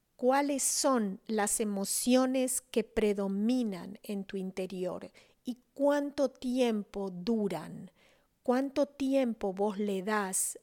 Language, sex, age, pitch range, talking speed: English, female, 40-59, 195-255 Hz, 100 wpm